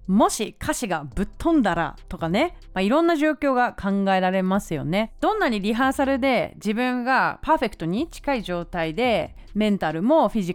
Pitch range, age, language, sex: 180-295 Hz, 30-49, Japanese, female